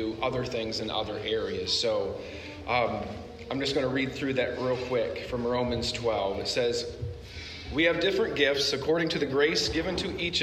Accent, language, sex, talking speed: American, English, male, 185 wpm